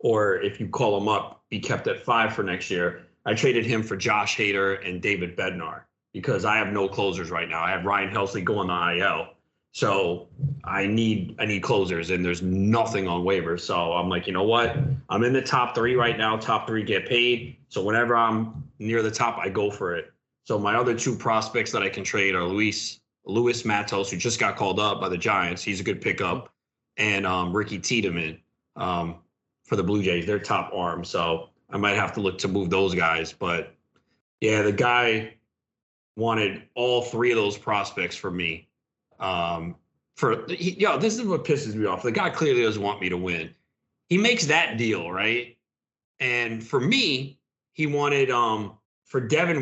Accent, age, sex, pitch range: American, 30-49, male, 95-135 Hz